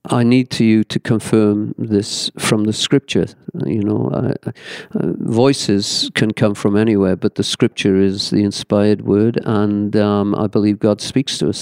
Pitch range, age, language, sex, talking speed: 105-120 Hz, 50-69, English, male, 170 wpm